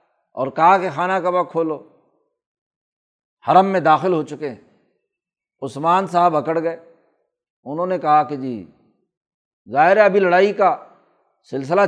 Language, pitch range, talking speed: Urdu, 145-180 Hz, 125 wpm